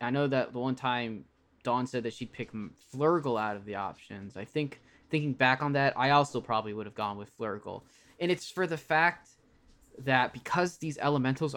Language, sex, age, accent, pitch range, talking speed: English, male, 10-29, American, 110-140 Hz, 200 wpm